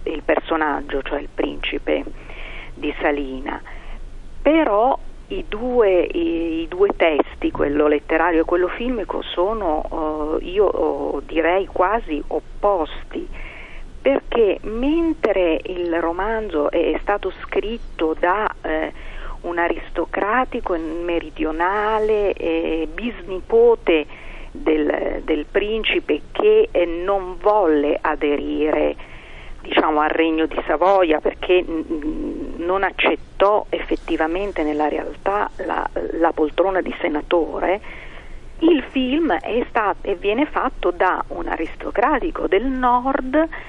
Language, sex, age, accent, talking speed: Italian, female, 40-59, native, 100 wpm